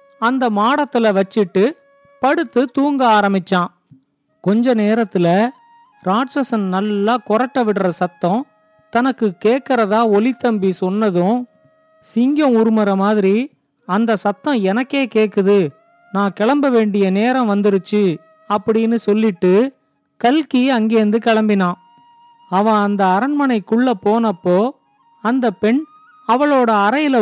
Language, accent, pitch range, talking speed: Tamil, native, 200-250 Hz, 95 wpm